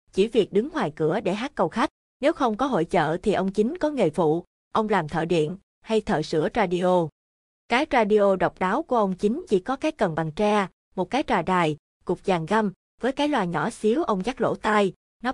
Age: 20-39